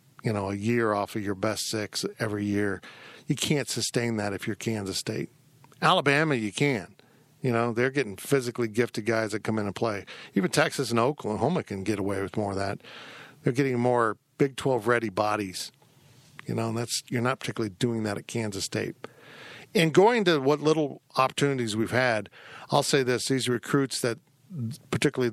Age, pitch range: 50-69, 110-140 Hz